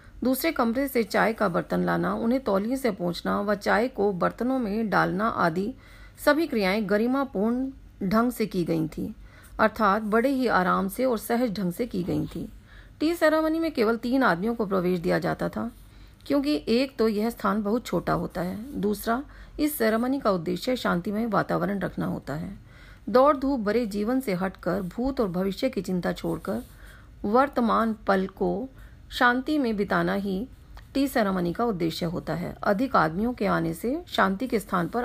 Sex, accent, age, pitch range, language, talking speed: female, native, 40-59, 180-240 Hz, Hindi, 165 wpm